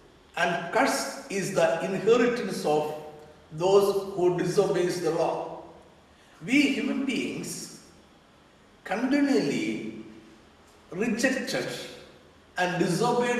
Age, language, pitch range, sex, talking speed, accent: 60-79, Malayalam, 165-230 Hz, male, 85 wpm, native